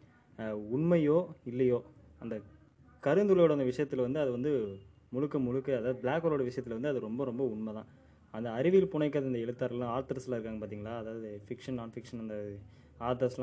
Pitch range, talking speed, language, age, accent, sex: 115-150 Hz, 145 wpm, Tamil, 20-39, native, male